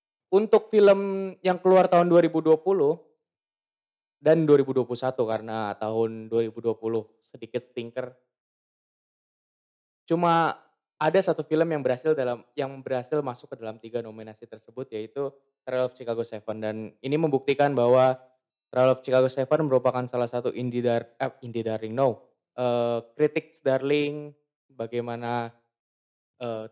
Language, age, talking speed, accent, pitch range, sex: Indonesian, 10-29, 125 wpm, native, 115-150 Hz, male